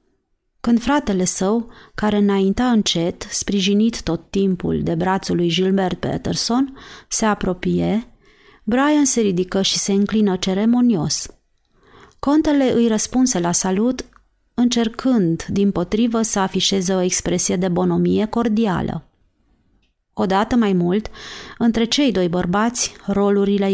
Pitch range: 180-225 Hz